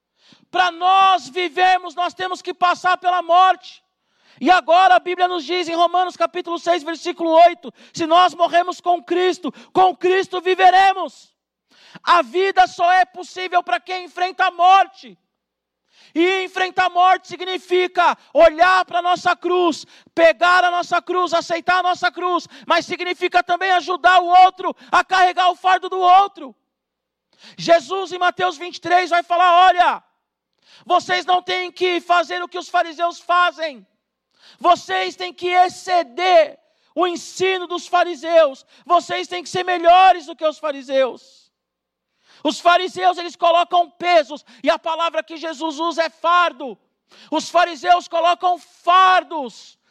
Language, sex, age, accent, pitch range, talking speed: Portuguese, male, 40-59, Brazilian, 330-360 Hz, 145 wpm